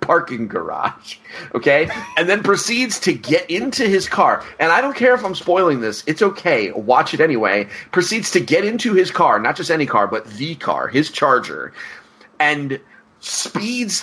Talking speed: 175 wpm